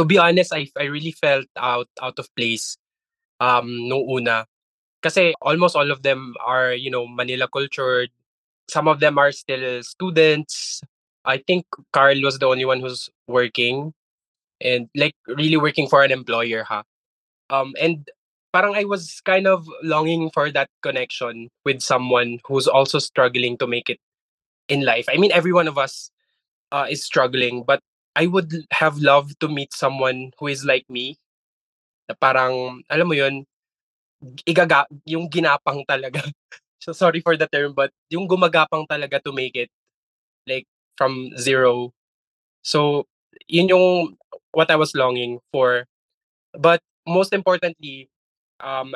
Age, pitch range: 20-39, 125-160 Hz